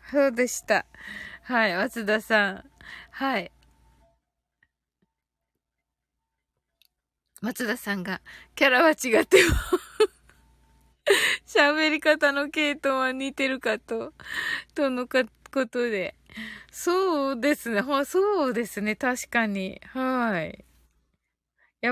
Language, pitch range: Japanese, 215-310 Hz